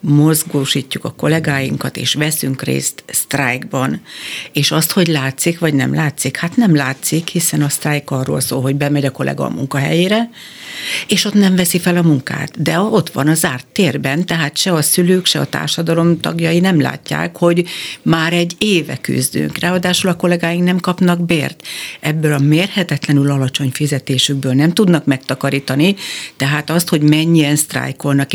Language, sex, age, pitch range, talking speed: Hungarian, female, 60-79, 140-170 Hz, 160 wpm